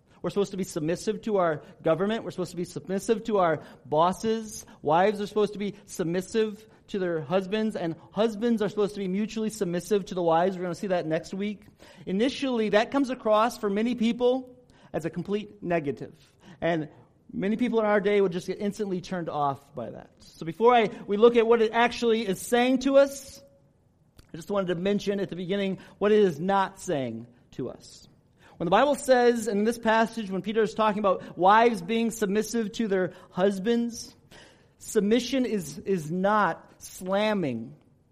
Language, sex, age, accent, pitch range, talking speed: English, male, 40-59, American, 175-225 Hz, 185 wpm